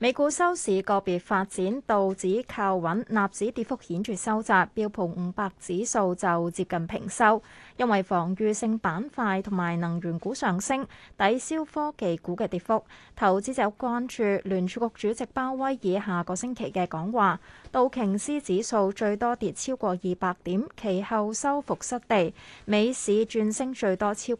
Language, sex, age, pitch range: Chinese, female, 20-39, 185-240 Hz